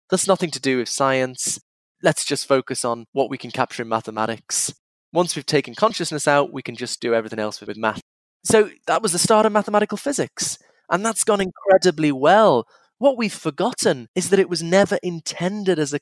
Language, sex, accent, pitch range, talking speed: English, male, British, 135-190 Hz, 200 wpm